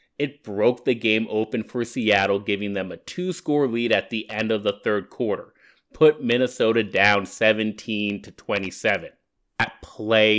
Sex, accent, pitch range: male, American, 100-120 Hz